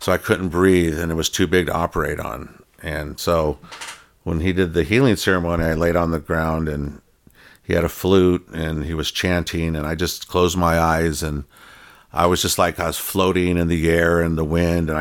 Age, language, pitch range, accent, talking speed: 50-69, Swedish, 80-95 Hz, American, 220 wpm